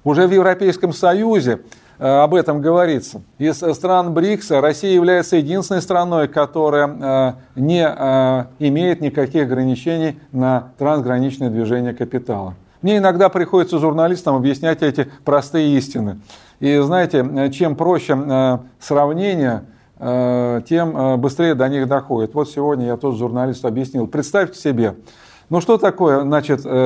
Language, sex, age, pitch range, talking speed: Russian, male, 40-59, 130-165 Hz, 115 wpm